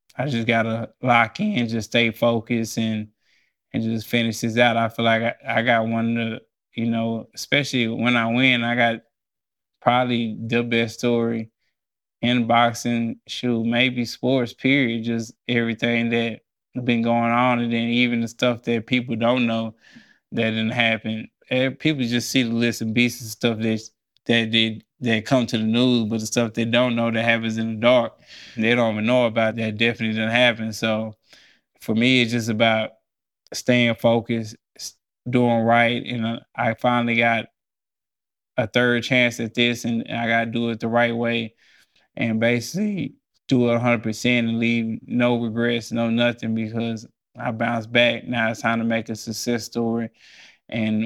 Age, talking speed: 20-39, 175 wpm